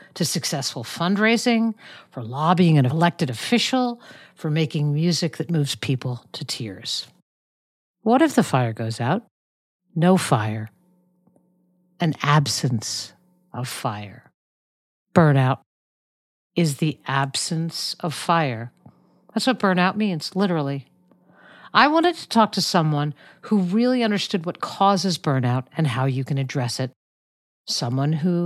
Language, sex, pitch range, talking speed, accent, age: English, female, 140-205 Hz, 125 wpm, American, 50-69